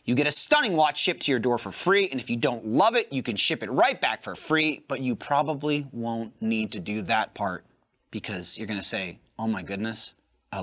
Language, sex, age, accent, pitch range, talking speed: English, male, 30-49, American, 125-190 Hz, 235 wpm